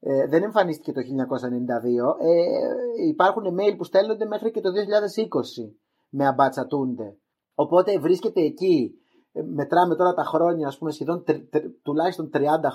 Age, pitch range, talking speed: 30-49, 135-210 Hz, 140 wpm